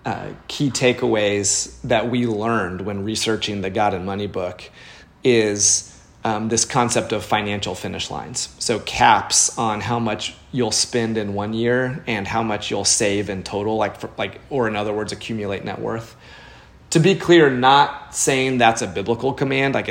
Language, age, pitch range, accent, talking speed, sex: English, 30-49, 100-120 Hz, American, 175 wpm, male